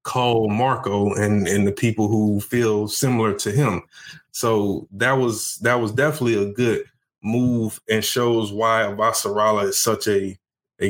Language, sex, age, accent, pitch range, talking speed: English, male, 20-39, American, 105-125 Hz, 155 wpm